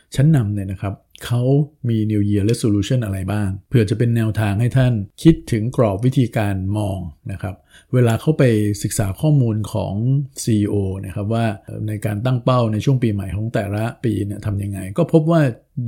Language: Thai